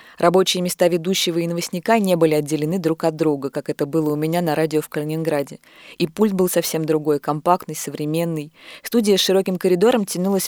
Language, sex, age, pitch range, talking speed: Russian, female, 20-39, 160-195 Hz, 185 wpm